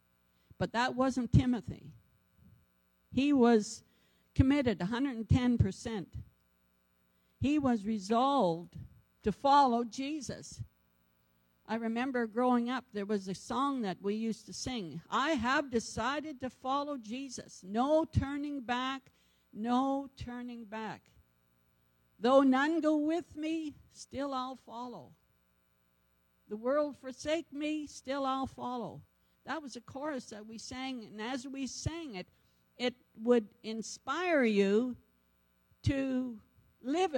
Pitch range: 165-265 Hz